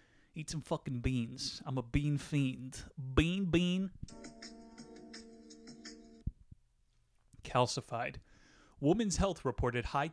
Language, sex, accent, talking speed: English, male, American, 90 wpm